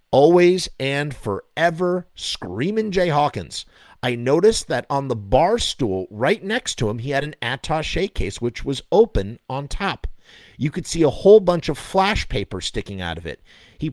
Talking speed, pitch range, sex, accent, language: 175 wpm, 115-165 Hz, male, American, English